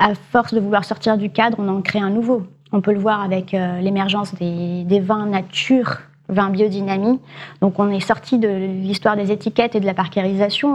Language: French